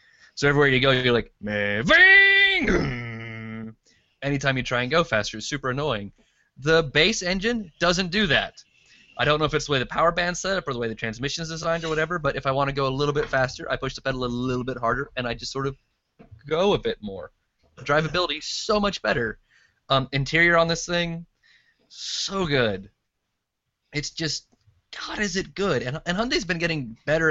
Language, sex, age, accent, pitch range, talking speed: English, male, 20-39, American, 120-165 Hz, 205 wpm